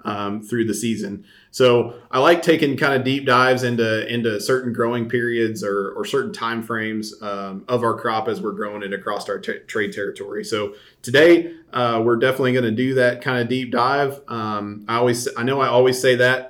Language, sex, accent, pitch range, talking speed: English, male, American, 115-130 Hz, 205 wpm